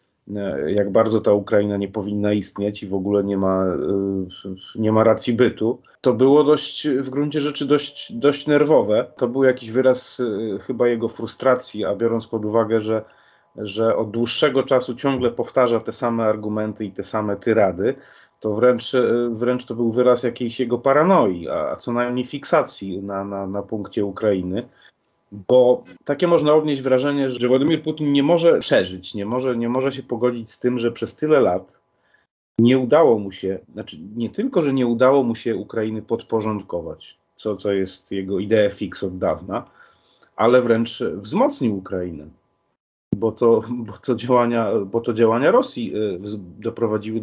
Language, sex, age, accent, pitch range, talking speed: Polish, male, 30-49, native, 105-125 Hz, 160 wpm